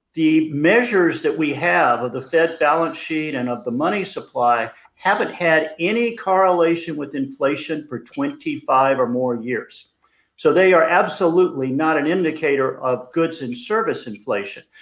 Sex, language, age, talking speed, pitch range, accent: male, English, 50-69, 155 wpm, 135-175 Hz, American